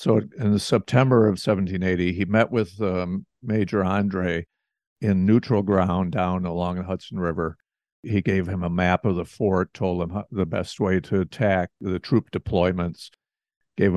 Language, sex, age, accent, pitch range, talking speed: English, male, 50-69, American, 90-110 Hz, 165 wpm